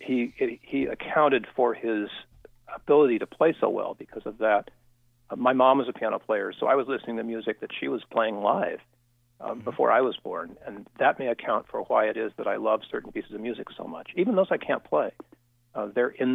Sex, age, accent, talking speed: male, 50-69, American, 225 wpm